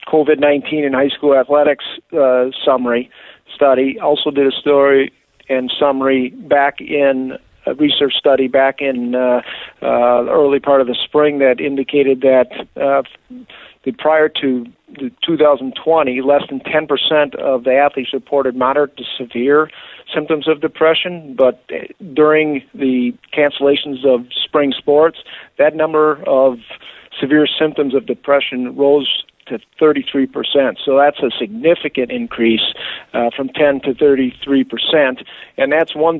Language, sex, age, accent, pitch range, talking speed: English, male, 50-69, American, 130-150 Hz, 130 wpm